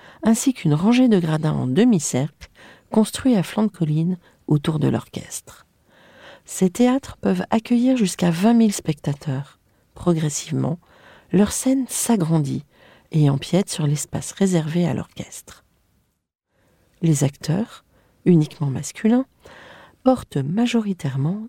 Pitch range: 145-205 Hz